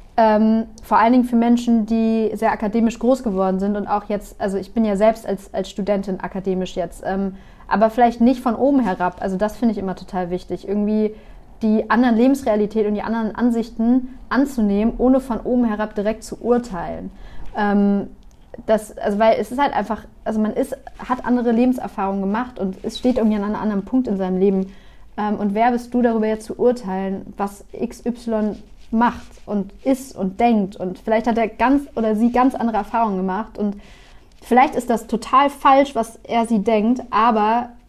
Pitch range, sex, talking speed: 200-235 Hz, female, 190 wpm